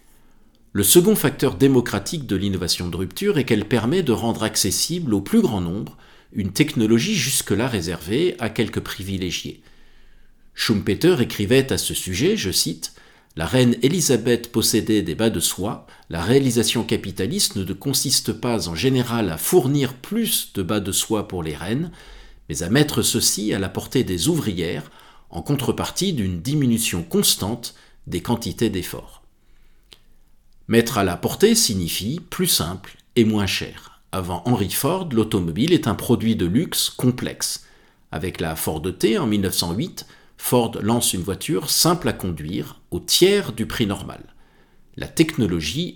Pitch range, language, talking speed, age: 95-130 Hz, French, 150 wpm, 50-69